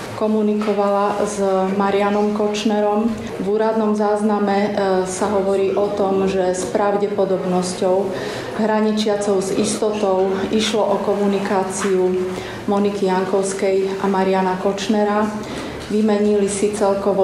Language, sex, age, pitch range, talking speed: Slovak, female, 30-49, 190-210 Hz, 95 wpm